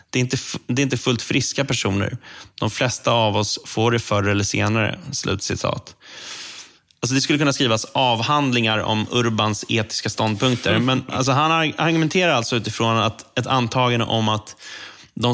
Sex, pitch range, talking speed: male, 110-130 Hz, 160 wpm